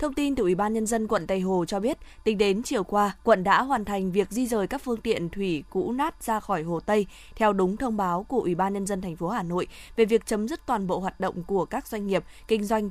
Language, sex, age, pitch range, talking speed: Vietnamese, female, 20-39, 185-225 Hz, 280 wpm